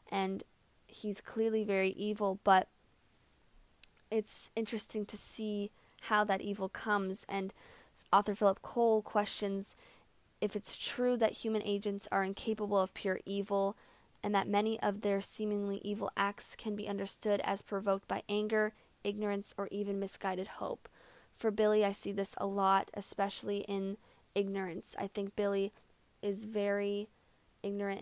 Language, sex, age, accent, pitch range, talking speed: English, female, 20-39, American, 195-210 Hz, 140 wpm